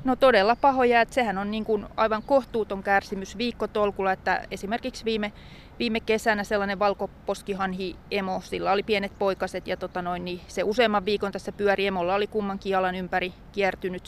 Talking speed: 165 wpm